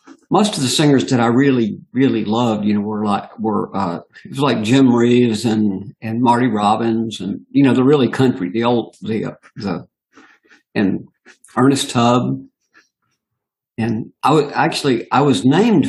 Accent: American